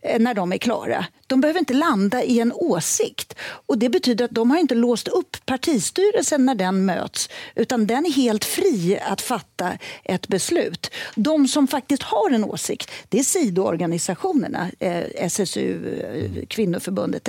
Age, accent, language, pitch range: 40-59, native, Swedish, 215-295 Hz